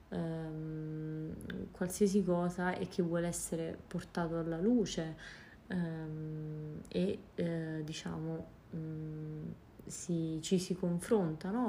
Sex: female